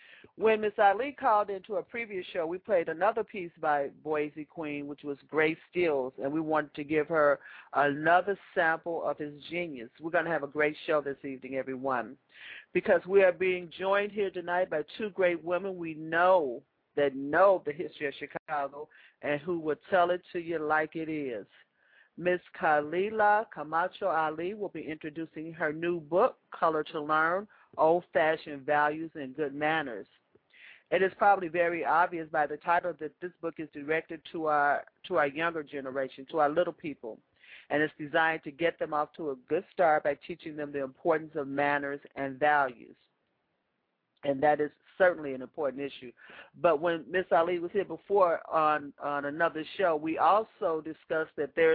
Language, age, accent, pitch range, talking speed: English, 50-69, American, 150-175 Hz, 175 wpm